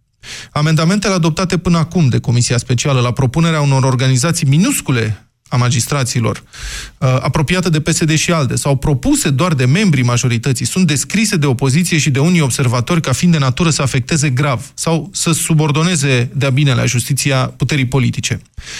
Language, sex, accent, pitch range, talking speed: Romanian, male, native, 130-160 Hz, 155 wpm